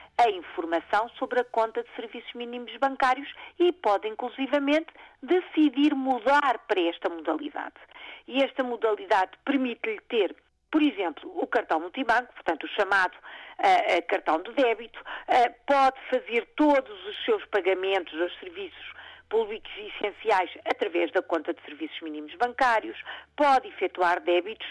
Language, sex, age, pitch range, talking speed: Portuguese, female, 50-69, 205-285 Hz, 135 wpm